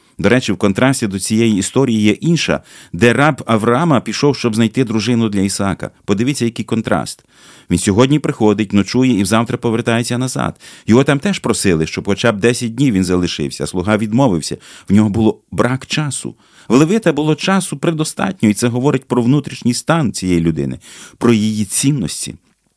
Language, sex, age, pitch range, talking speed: Ukrainian, male, 30-49, 100-130 Hz, 165 wpm